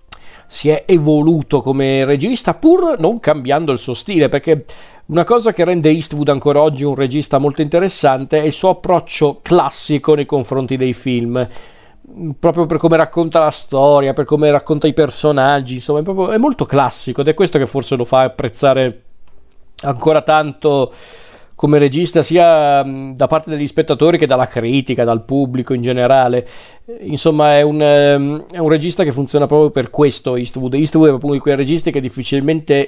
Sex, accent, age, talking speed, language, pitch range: male, native, 40-59, 170 wpm, Italian, 125-155 Hz